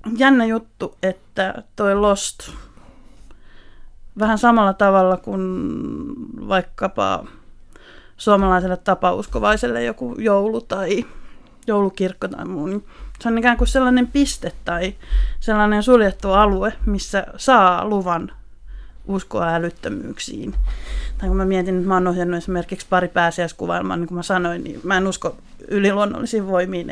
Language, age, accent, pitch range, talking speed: Finnish, 30-49, native, 175-210 Hz, 120 wpm